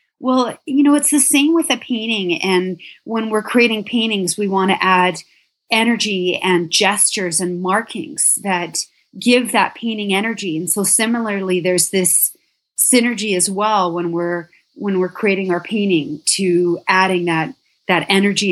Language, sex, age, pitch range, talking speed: English, female, 30-49, 185-245 Hz, 155 wpm